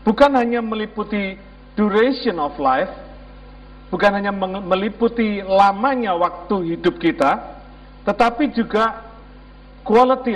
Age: 50-69